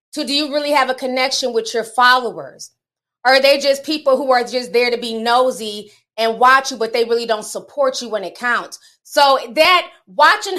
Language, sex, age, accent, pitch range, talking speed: English, female, 20-39, American, 235-290 Hz, 205 wpm